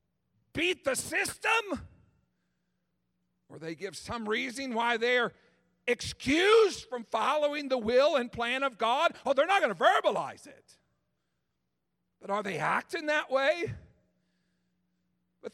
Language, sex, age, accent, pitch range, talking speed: English, male, 50-69, American, 195-285 Hz, 125 wpm